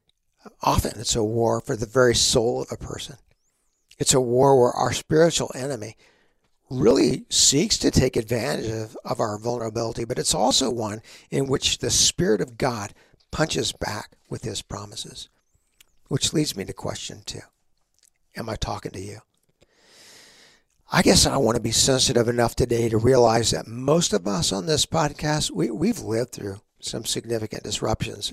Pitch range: 115-140 Hz